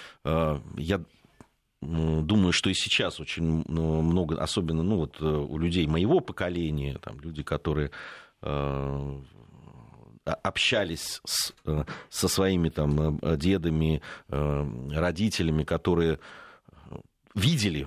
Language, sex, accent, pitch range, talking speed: Russian, male, native, 75-105 Hz, 85 wpm